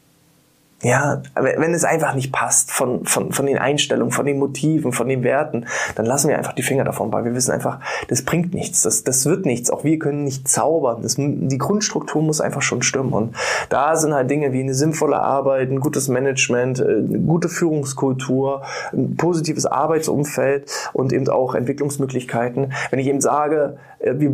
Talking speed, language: 180 wpm, German